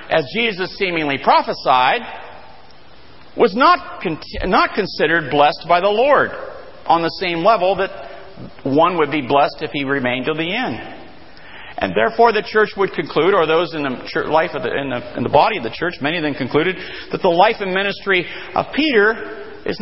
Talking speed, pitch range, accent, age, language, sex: 180 wpm, 165-220 Hz, American, 50-69, English, male